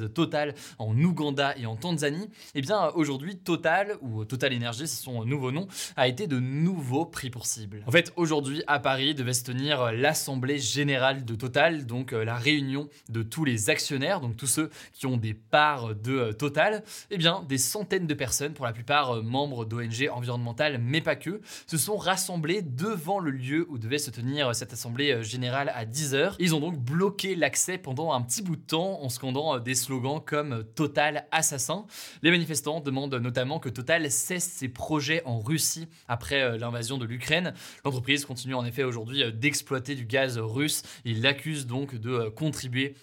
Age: 20-39